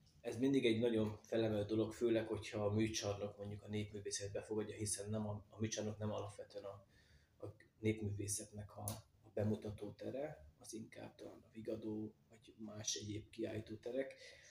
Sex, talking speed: male, 145 wpm